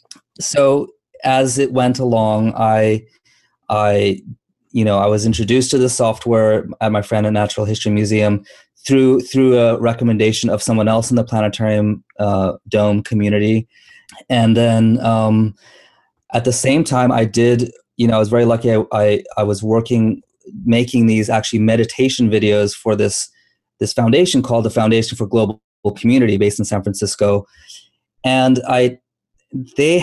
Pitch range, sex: 105-125 Hz, male